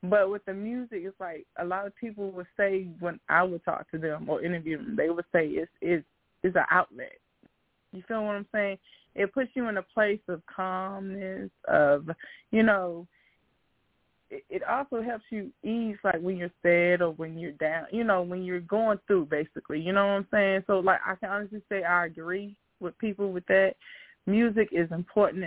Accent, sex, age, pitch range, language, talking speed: American, female, 20-39, 170-200 Hz, English, 205 wpm